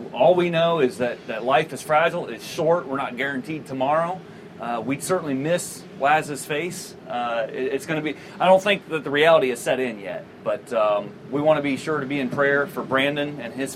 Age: 30-49